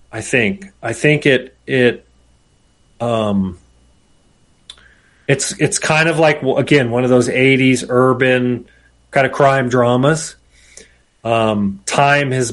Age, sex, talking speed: 30-49, male, 120 wpm